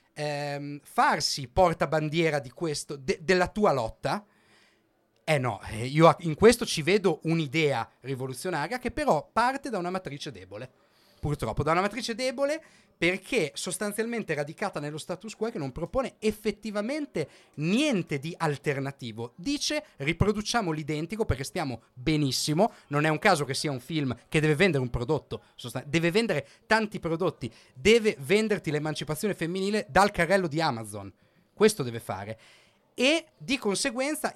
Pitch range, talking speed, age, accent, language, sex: 140-205 Hz, 140 wpm, 40-59, native, Italian, male